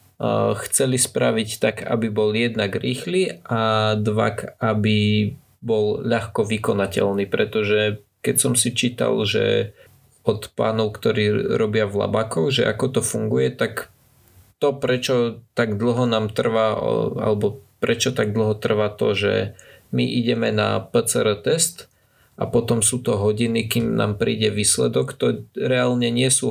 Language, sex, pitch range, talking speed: Slovak, male, 105-120 Hz, 140 wpm